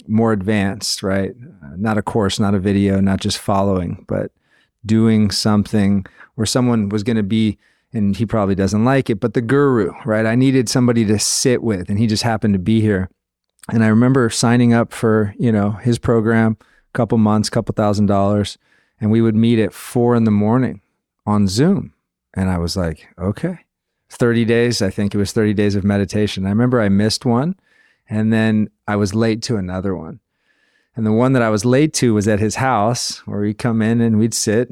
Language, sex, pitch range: English, male, 100-120 Hz